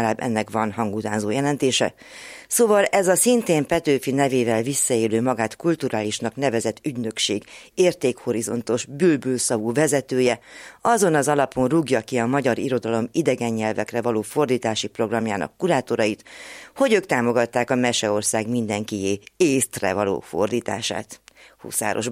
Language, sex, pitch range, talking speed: Hungarian, female, 110-135 Hz, 115 wpm